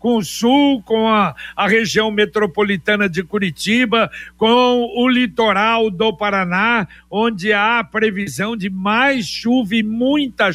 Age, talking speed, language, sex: 60-79, 135 wpm, Portuguese, male